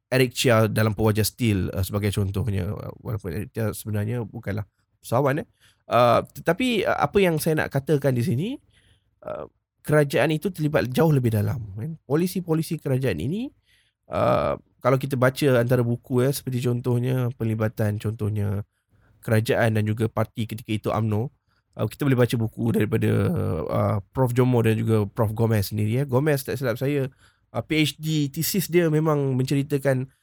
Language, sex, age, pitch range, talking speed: Malay, male, 20-39, 105-140 Hz, 155 wpm